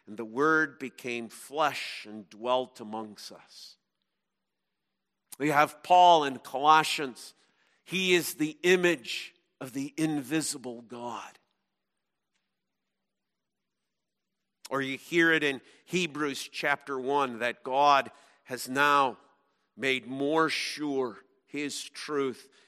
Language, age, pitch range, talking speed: English, 50-69, 125-150 Hz, 105 wpm